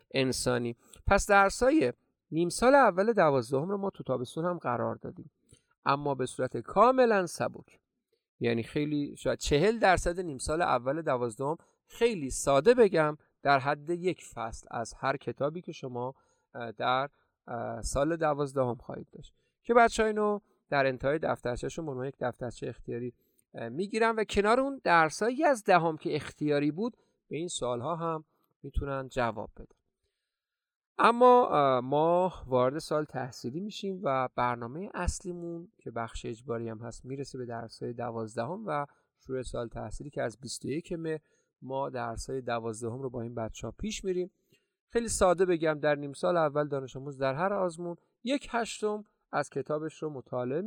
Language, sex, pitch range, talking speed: Persian, male, 125-185 Hz, 145 wpm